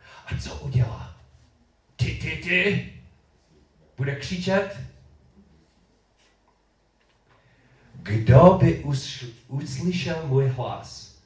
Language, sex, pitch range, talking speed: Czech, male, 110-145 Hz, 70 wpm